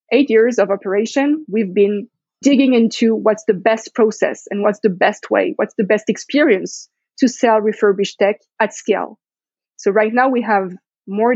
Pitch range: 200-240 Hz